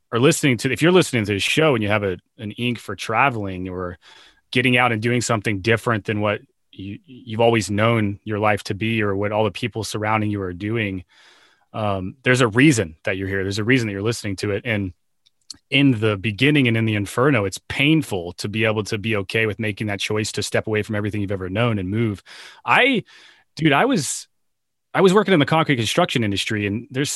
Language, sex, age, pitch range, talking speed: English, male, 30-49, 105-120 Hz, 225 wpm